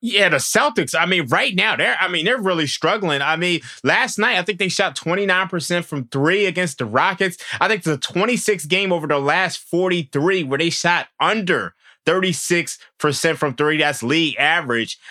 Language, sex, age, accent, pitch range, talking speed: English, male, 20-39, American, 140-175 Hz, 185 wpm